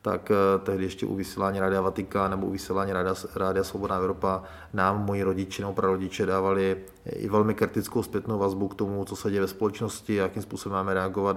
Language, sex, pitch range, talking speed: Czech, male, 95-105 Hz, 180 wpm